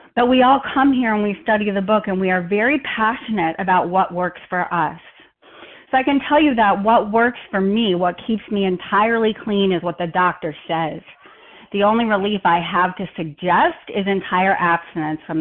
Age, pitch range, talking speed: 40-59, 185-255 Hz, 200 wpm